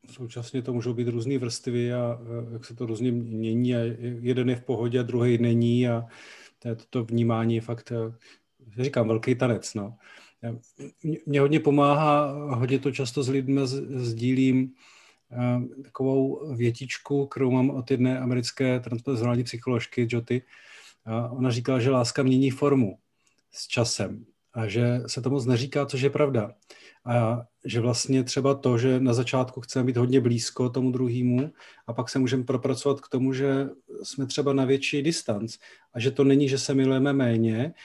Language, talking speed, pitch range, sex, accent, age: Czech, 165 wpm, 120-135 Hz, male, native, 40-59